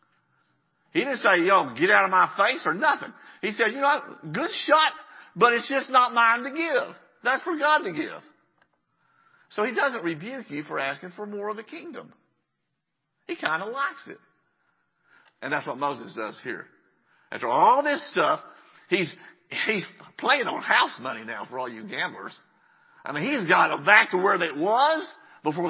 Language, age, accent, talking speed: English, 50-69, American, 180 wpm